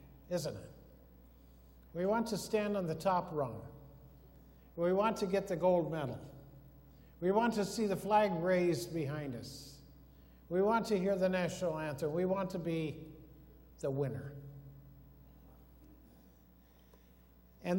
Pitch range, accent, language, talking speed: 145-200 Hz, American, English, 135 wpm